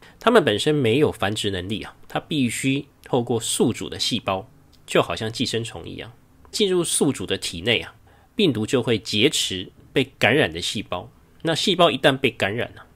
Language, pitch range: Chinese, 105-135 Hz